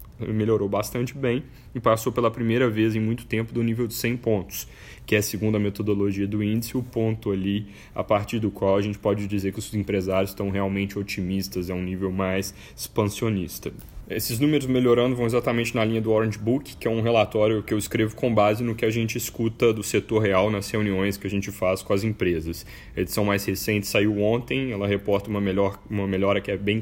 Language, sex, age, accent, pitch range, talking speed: Portuguese, male, 10-29, Brazilian, 100-115 Hz, 215 wpm